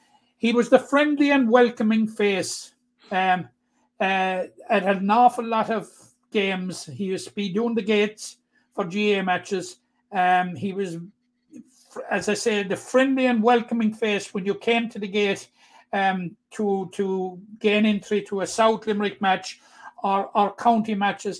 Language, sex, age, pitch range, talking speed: English, male, 60-79, 190-235 Hz, 155 wpm